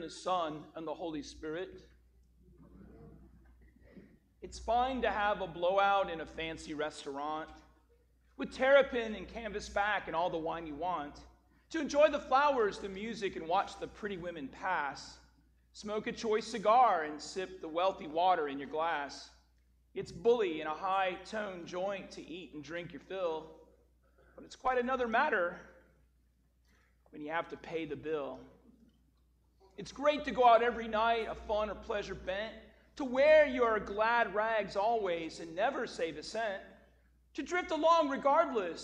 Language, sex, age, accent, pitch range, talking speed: English, male, 40-59, American, 165-240 Hz, 160 wpm